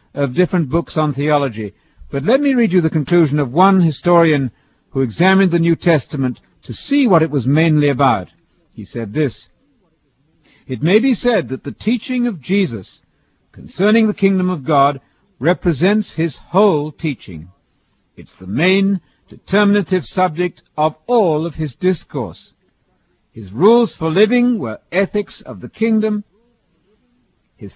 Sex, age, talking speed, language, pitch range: male, 60-79, 145 wpm, English, 140-200 Hz